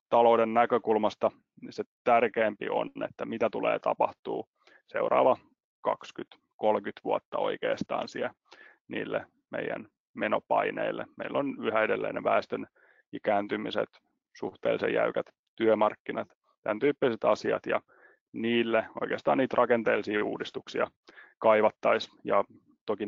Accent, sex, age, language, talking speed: native, male, 30-49, Finnish, 100 wpm